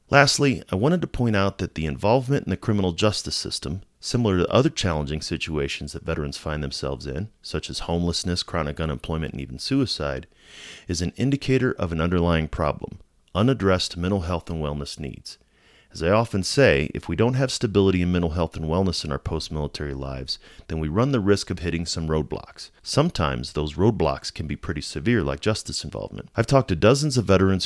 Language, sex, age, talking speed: English, male, 30-49, 190 wpm